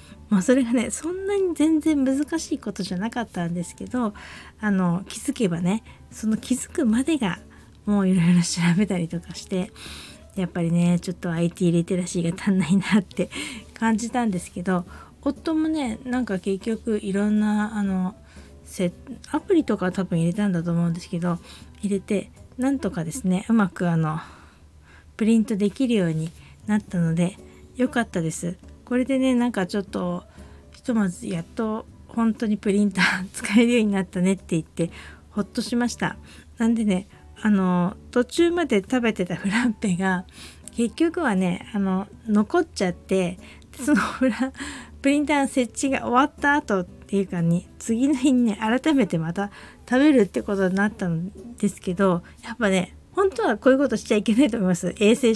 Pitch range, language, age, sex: 185-245 Hz, Japanese, 20-39, female